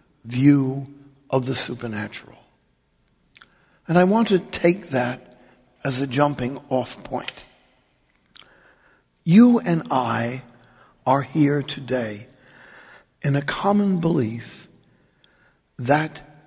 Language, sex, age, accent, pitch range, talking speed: English, male, 60-79, American, 130-170 Hz, 95 wpm